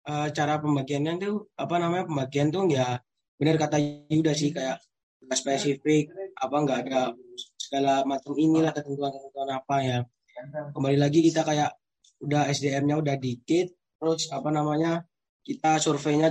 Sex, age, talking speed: male, 20-39, 135 wpm